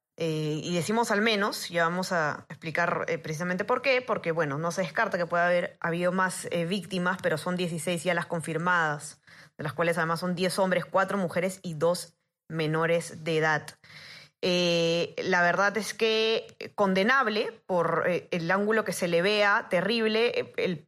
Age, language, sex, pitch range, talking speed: 20-39, Spanish, female, 165-200 Hz, 175 wpm